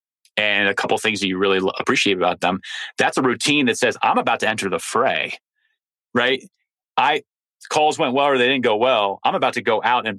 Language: English